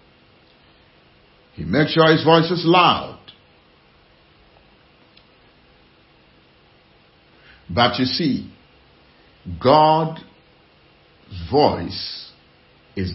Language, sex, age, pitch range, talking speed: English, male, 60-79, 95-155 Hz, 60 wpm